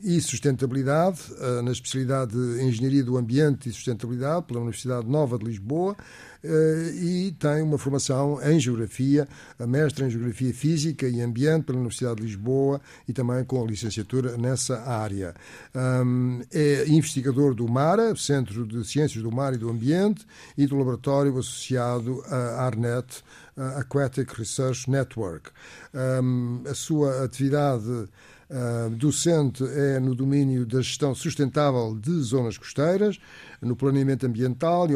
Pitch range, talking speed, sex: 120-145 Hz, 135 wpm, male